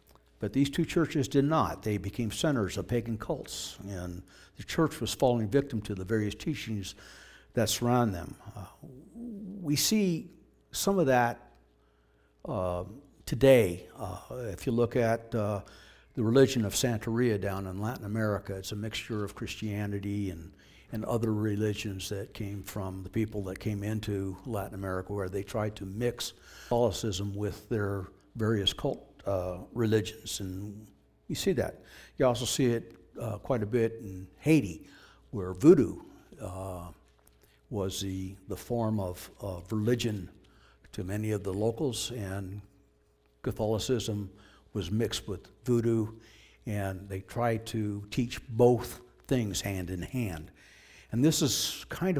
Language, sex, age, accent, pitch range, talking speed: English, male, 60-79, American, 95-120 Hz, 145 wpm